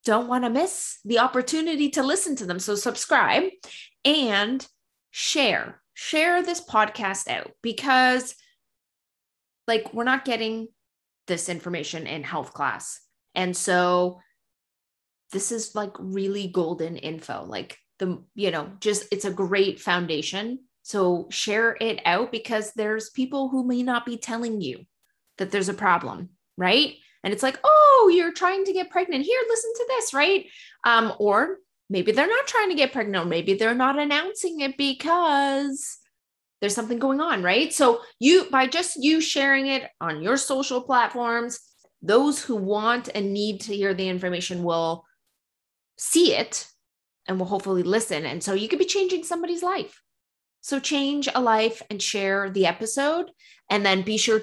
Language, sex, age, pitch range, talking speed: English, female, 20-39, 195-285 Hz, 160 wpm